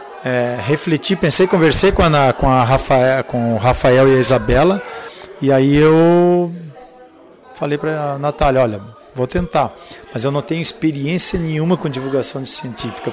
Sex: male